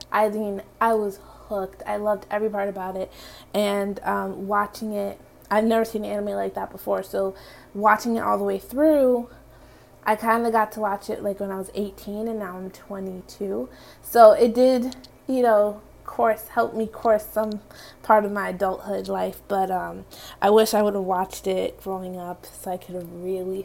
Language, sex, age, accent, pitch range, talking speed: English, female, 20-39, American, 200-235 Hz, 195 wpm